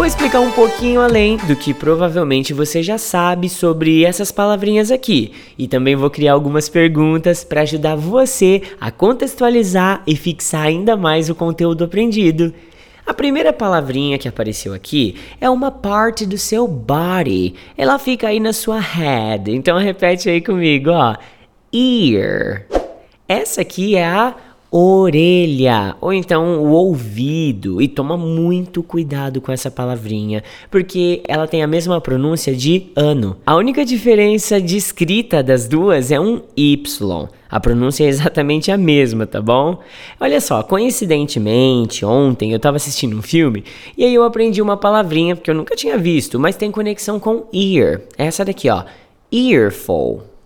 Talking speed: 150 wpm